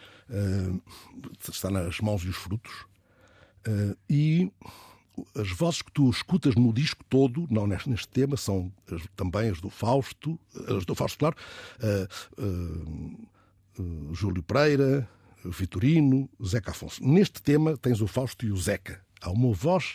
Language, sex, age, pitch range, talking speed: Portuguese, male, 60-79, 95-130 Hz, 155 wpm